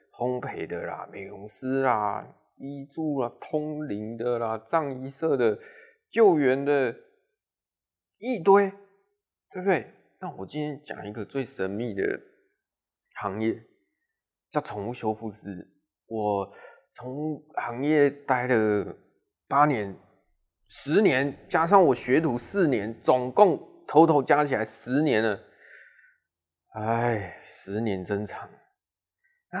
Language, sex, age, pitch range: Chinese, male, 20-39, 105-155 Hz